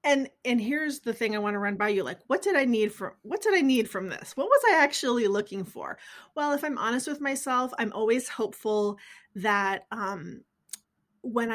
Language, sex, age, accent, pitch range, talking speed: English, female, 30-49, American, 195-235 Hz, 215 wpm